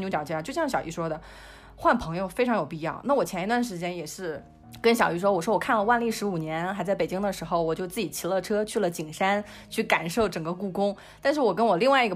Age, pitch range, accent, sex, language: 20-39, 175-240 Hz, native, female, Chinese